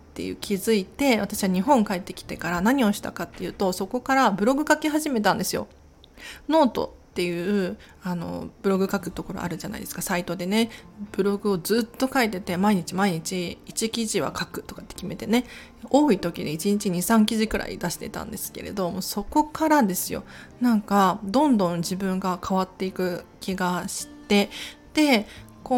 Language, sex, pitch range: Japanese, female, 180-240 Hz